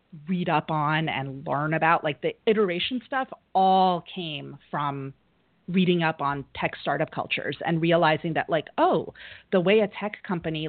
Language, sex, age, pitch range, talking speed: English, female, 30-49, 150-200 Hz, 165 wpm